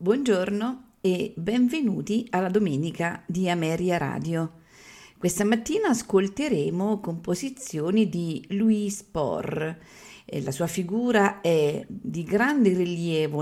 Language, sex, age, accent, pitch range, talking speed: Italian, female, 50-69, native, 150-210 Hz, 100 wpm